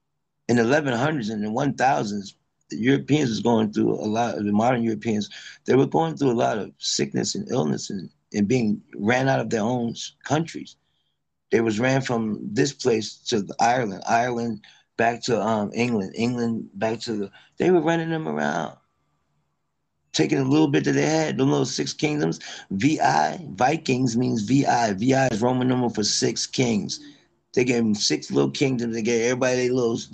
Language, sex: English, male